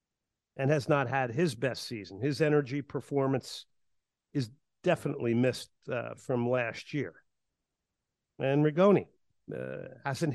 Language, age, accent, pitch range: English, 50-69, American, 120-150 Hz